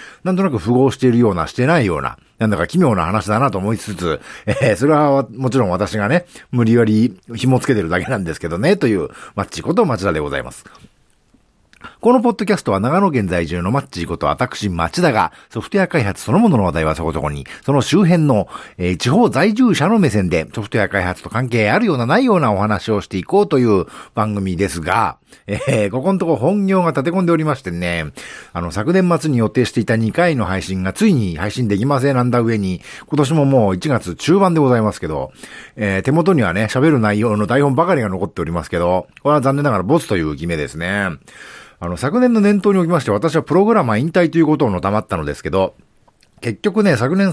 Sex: male